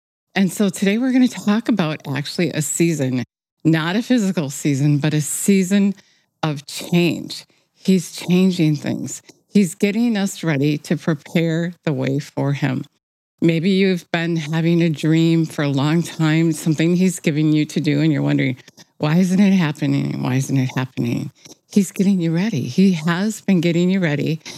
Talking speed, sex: 170 wpm, female